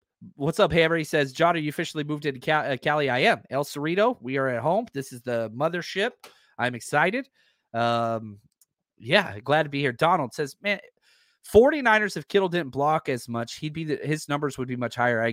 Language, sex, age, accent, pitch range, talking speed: English, male, 30-49, American, 125-165 Hz, 210 wpm